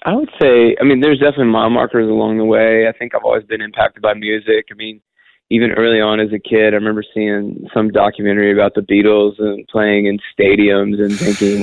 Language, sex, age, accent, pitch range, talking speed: English, male, 20-39, American, 100-115 Hz, 215 wpm